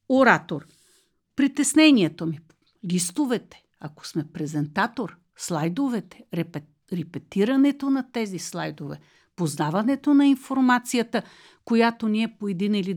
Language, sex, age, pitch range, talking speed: Bulgarian, female, 50-69, 175-250 Hz, 95 wpm